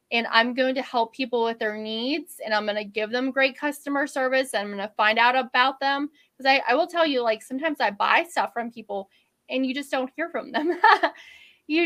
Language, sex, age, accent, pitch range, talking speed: English, female, 20-39, American, 225-285 Hz, 230 wpm